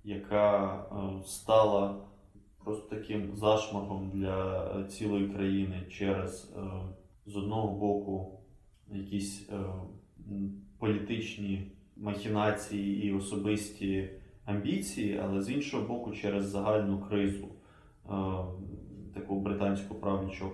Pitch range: 95-105 Hz